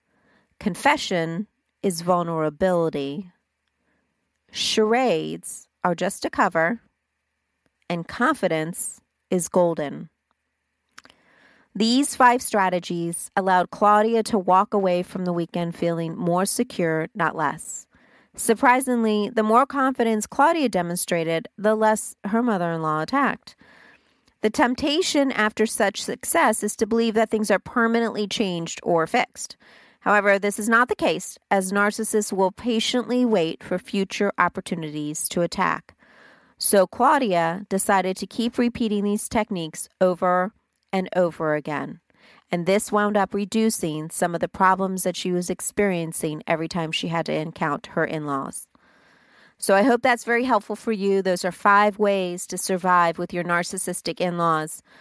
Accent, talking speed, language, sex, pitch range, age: American, 130 wpm, English, female, 175-220 Hz, 40-59